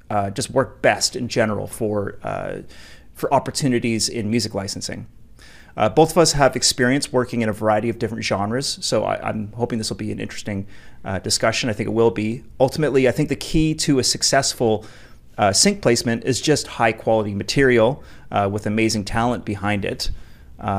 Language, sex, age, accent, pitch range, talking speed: English, male, 30-49, American, 105-130 Hz, 185 wpm